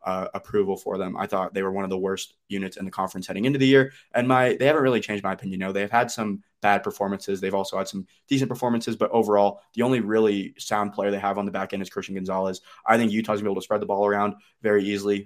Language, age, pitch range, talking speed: English, 20-39, 95-110 Hz, 270 wpm